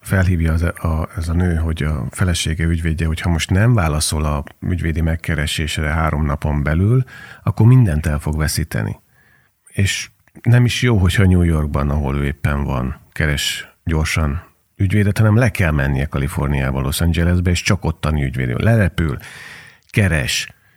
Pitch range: 80-115 Hz